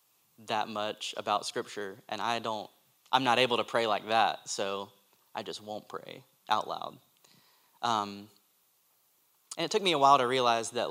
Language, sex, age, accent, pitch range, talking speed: English, male, 20-39, American, 110-130 Hz, 170 wpm